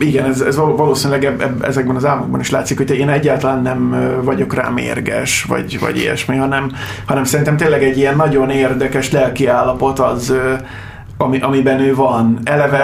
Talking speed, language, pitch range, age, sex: 165 wpm, Hungarian, 130-150 Hz, 30-49, male